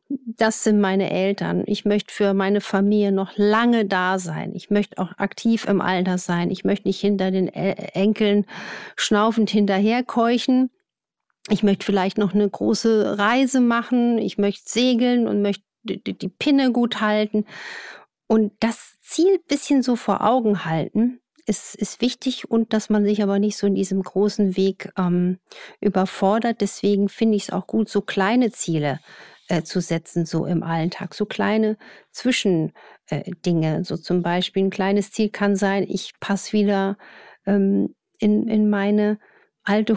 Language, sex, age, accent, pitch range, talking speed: German, female, 50-69, German, 195-220 Hz, 155 wpm